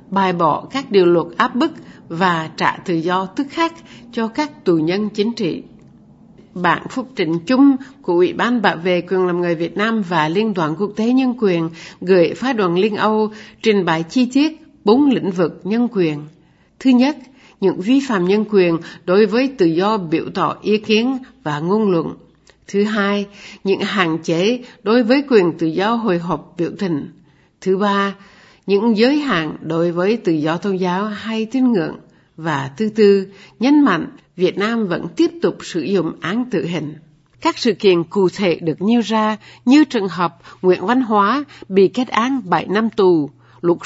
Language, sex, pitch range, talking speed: Vietnamese, female, 175-235 Hz, 185 wpm